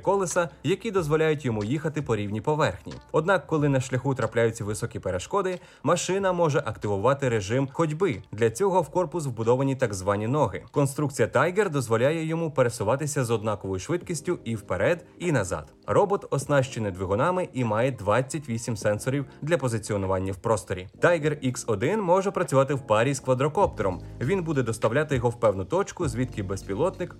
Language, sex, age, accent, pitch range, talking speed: Ukrainian, male, 30-49, native, 110-165 Hz, 150 wpm